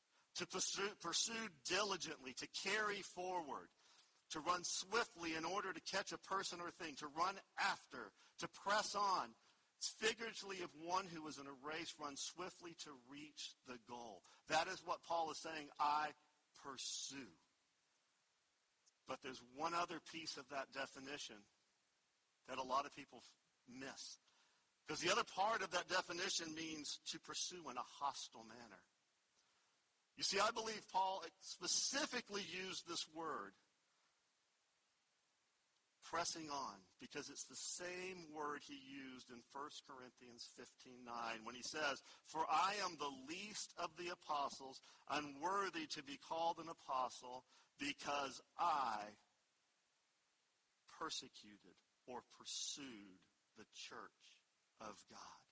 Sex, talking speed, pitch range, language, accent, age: male, 135 wpm, 140-185 Hz, English, American, 50-69